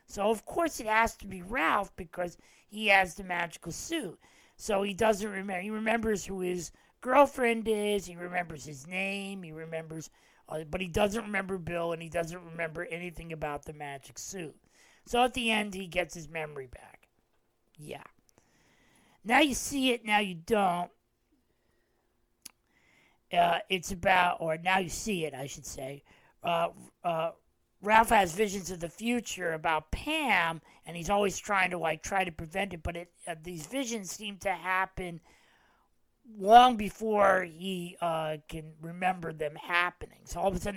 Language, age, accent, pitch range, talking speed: English, 40-59, American, 165-205 Hz, 165 wpm